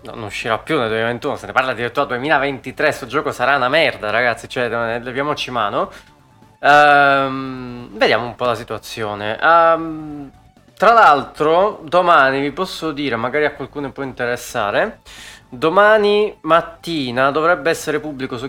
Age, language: 20-39, Italian